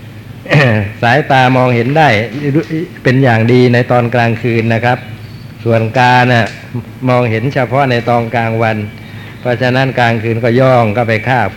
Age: 60-79